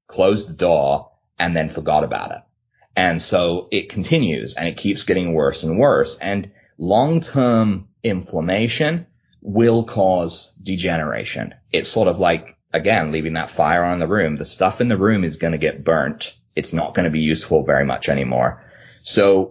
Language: English